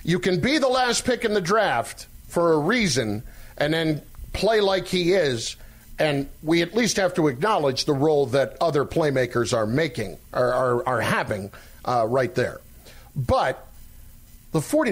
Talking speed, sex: 165 wpm, male